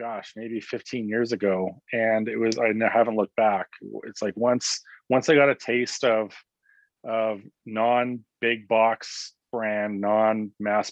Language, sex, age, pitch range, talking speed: English, male, 30-49, 100-120 Hz, 145 wpm